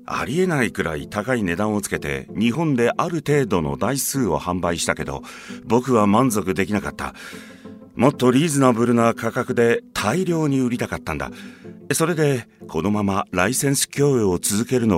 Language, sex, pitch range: Japanese, male, 105-150 Hz